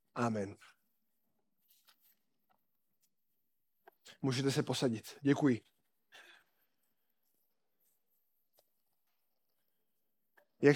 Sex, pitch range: male, 165-215 Hz